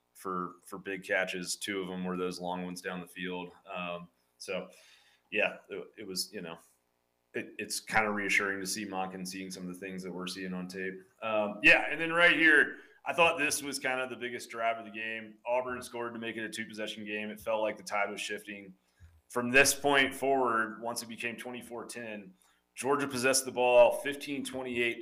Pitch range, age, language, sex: 95-115 Hz, 30-49, English, male